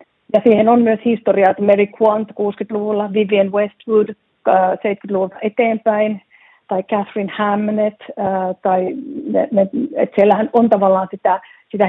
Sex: female